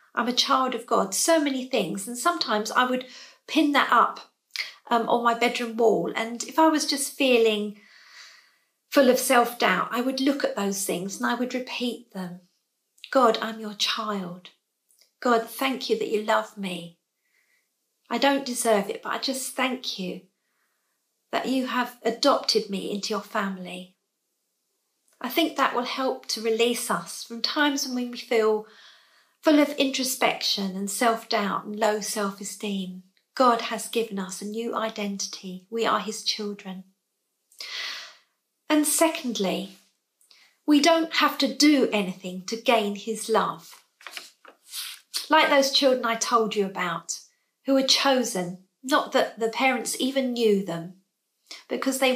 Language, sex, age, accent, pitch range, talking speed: English, female, 50-69, British, 205-265 Hz, 150 wpm